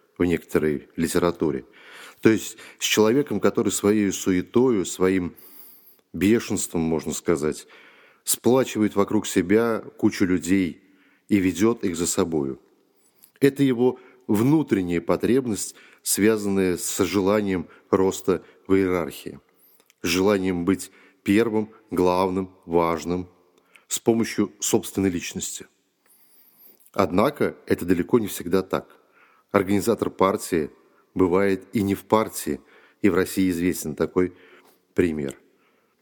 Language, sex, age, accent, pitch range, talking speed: Russian, male, 30-49, native, 90-105 Hz, 105 wpm